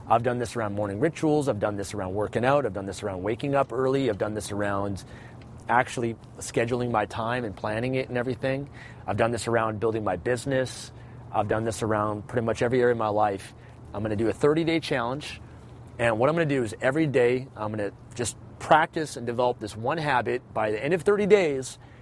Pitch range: 115-130 Hz